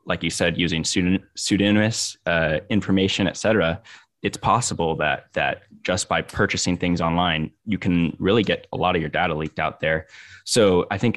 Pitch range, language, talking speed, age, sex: 85-100 Hz, English, 175 wpm, 10-29, male